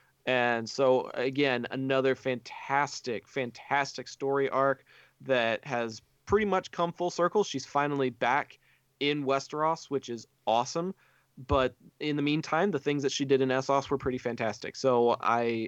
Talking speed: 150 wpm